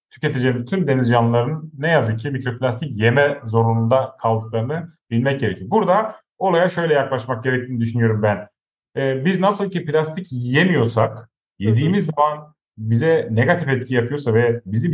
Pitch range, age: 115-155 Hz, 40-59